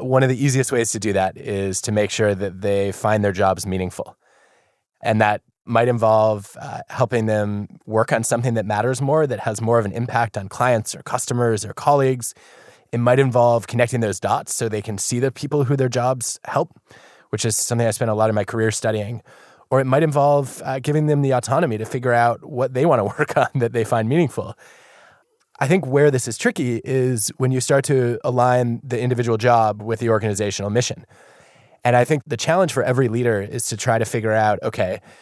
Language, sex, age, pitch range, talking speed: English, male, 20-39, 110-130 Hz, 215 wpm